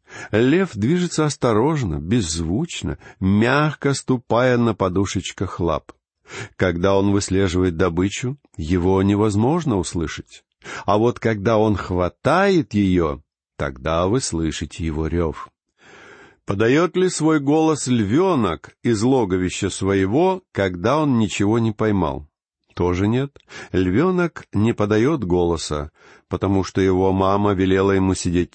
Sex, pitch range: male, 90-125 Hz